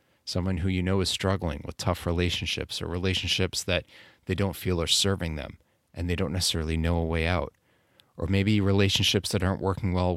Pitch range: 85-105 Hz